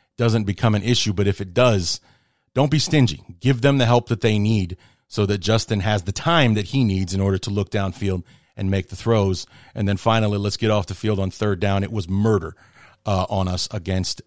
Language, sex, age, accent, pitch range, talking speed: English, male, 40-59, American, 100-125 Hz, 225 wpm